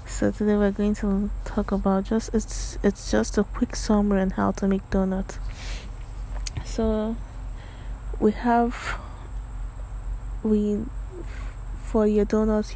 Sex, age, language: female, 20-39, English